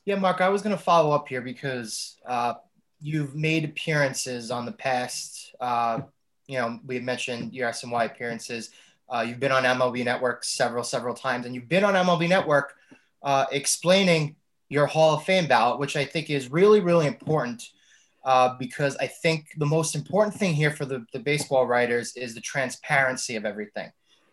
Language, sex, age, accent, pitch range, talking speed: English, male, 20-39, American, 125-160 Hz, 180 wpm